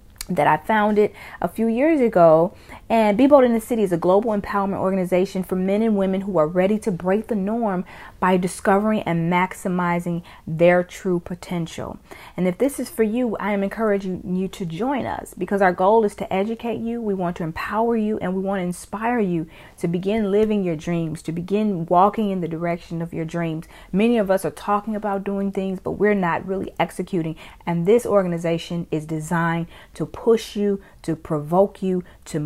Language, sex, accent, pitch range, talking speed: English, female, American, 170-210 Hz, 195 wpm